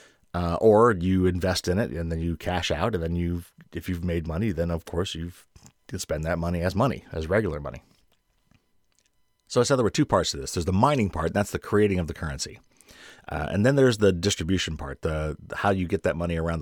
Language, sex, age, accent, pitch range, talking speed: English, male, 30-49, American, 85-105 Hz, 230 wpm